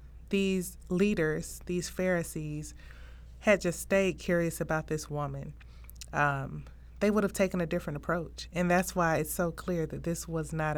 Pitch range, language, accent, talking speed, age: 150-195 Hz, English, American, 160 wpm, 30-49